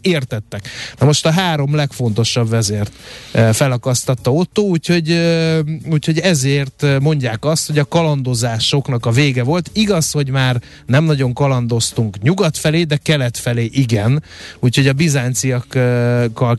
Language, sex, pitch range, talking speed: Hungarian, male, 120-150 Hz, 125 wpm